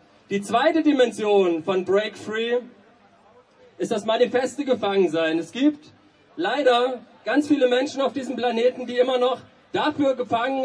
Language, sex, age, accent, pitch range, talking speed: German, male, 40-59, German, 225-275 Hz, 135 wpm